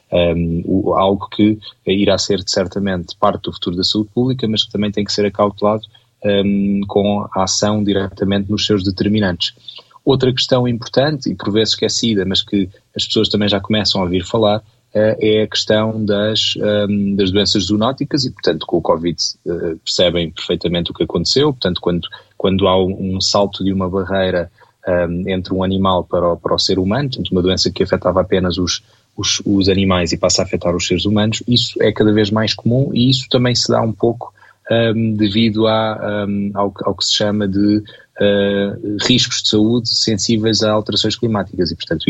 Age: 20-39